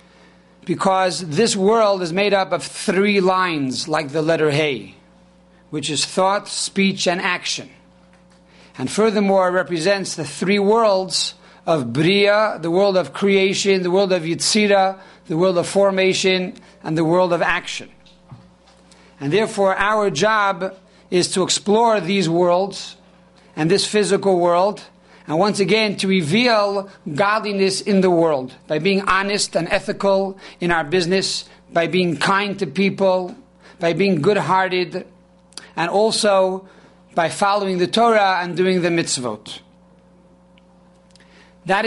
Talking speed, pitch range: 135 wpm, 175-200 Hz